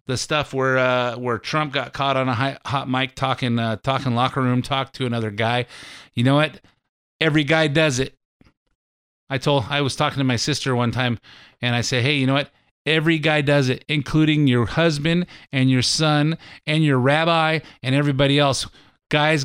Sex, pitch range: male, 125-155 Hz